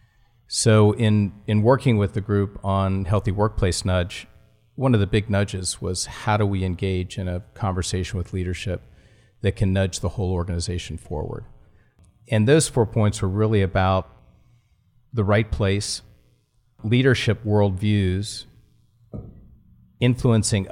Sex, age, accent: male, 40-59, American